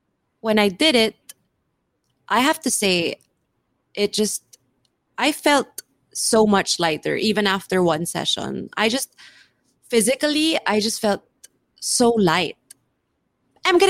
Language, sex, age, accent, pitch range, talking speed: English, female, 20-39, Filipino, 185-250 Hz, 125 wpm